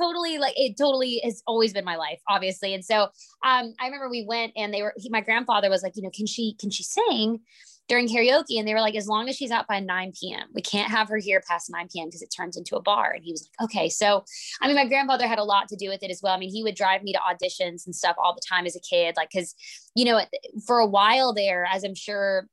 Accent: American